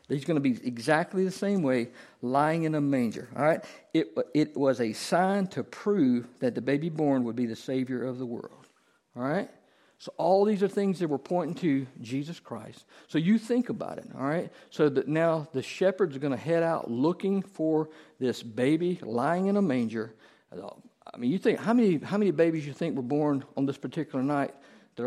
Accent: American